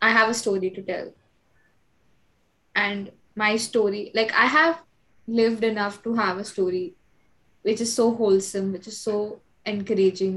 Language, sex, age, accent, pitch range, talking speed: English, female, 20-39, Indian, 205-230 Hz, 150 wpm